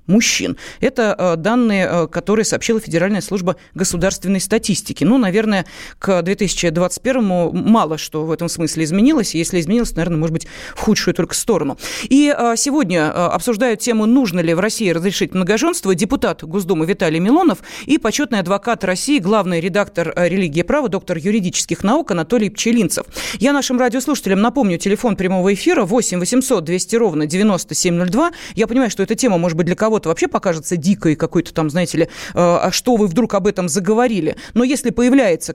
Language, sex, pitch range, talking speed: Russian, female, 180-235 Hz, 165 wpm